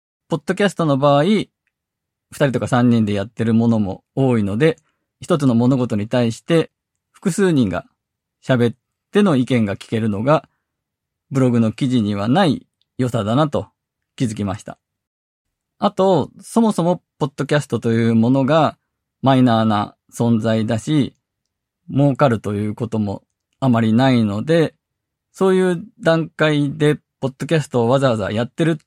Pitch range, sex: 115-160 Hz, male